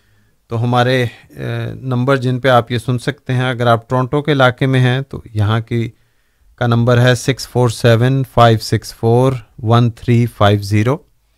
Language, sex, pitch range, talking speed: Urdu, male, 110-130 Hz, 135 wpm